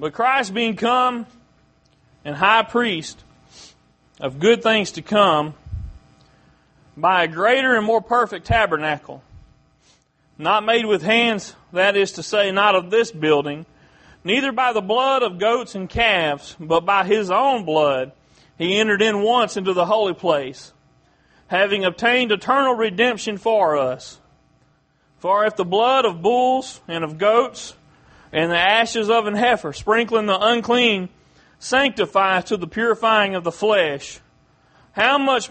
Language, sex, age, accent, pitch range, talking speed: English, male, 40-59, American, 165-230 Hz, 145 wpm